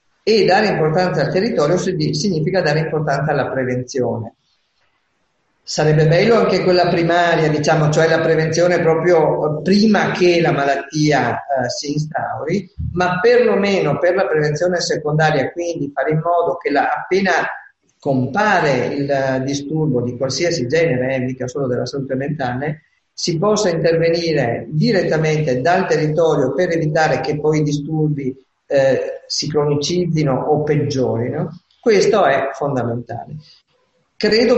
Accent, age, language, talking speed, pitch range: native, 50-69, Italian, 125 wpm, 140-175 Hz